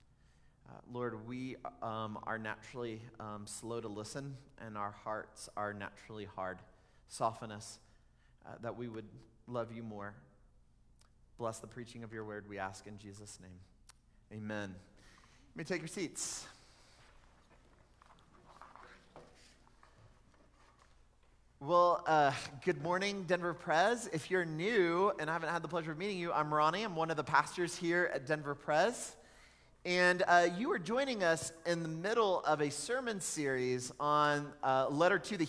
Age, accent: 30-49, American